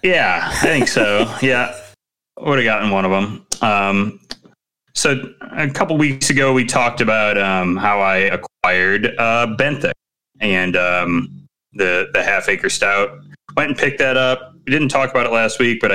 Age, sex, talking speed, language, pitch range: 30-49, male, 175 wpm, English, 95-125 Hz